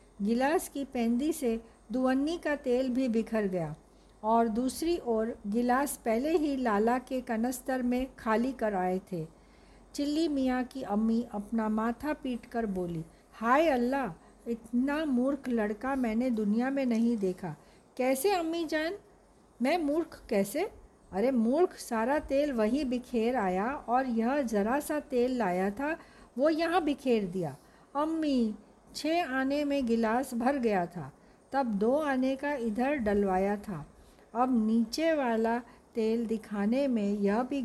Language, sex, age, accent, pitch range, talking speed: Hindi, female, 50-69, native, 220-285 Hz, 140 wpm